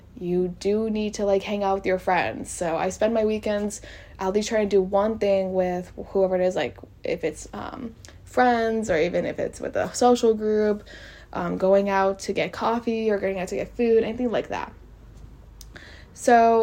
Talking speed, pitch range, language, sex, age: 200 wpm, 185-225 Hz, English, female, 10-29